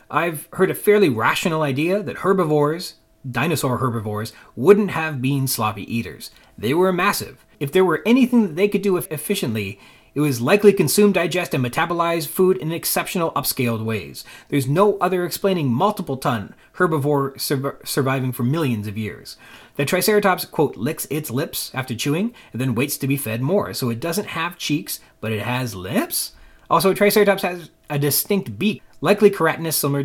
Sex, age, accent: male, 30-49, American